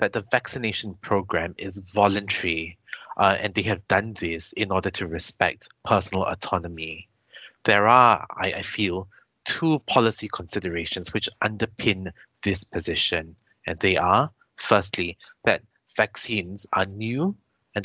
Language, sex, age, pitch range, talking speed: English, male, 20-39, 95-115 Hz, 130 wpm